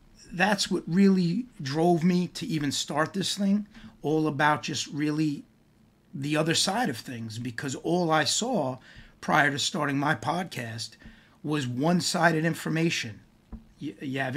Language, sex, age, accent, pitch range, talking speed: English, male, 30-49, American, 125-170 Hz, 140 wpm